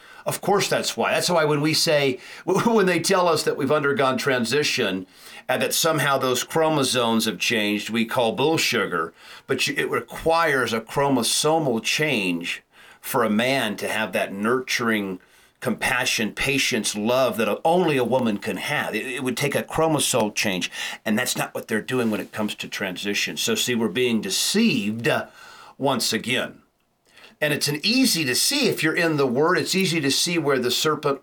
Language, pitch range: English, 115-145 Hz